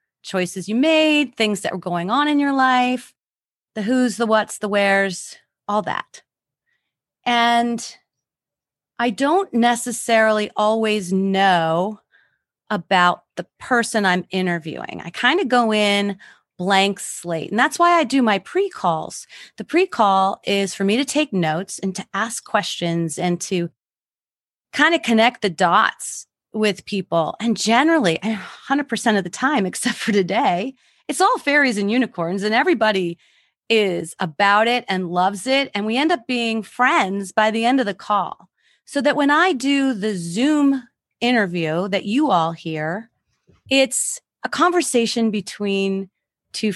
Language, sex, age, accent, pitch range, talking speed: English, female, 30-49, American, 190-250 Hz, 150 wpm